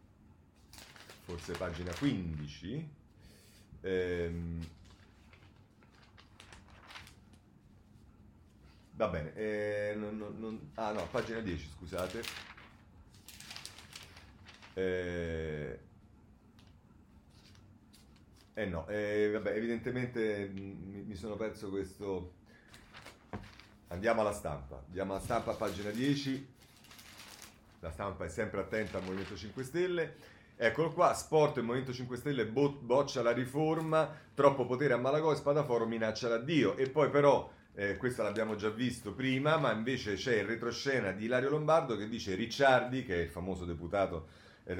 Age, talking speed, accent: 40-59, 115 wpm, native